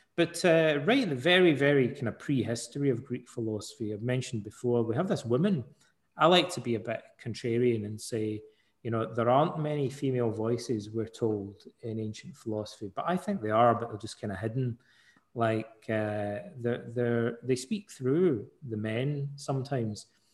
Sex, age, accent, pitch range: male, 30-49, British, 110-140 Hz